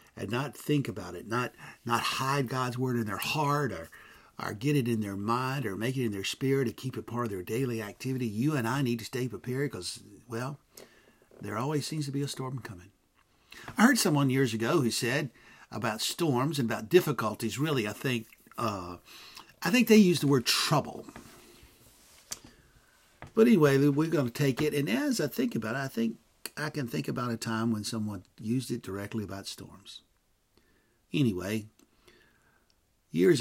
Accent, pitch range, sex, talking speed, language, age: American, 110-140 Hz, male, 185 wpm, English, 60-79